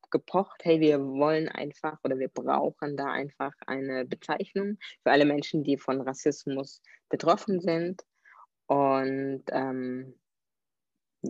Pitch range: 135-175 Hz